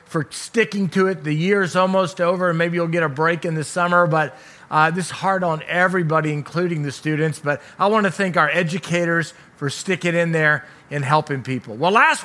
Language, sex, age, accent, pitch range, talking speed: English, male, 40-59, American, 165-200 Hz, 205 wpm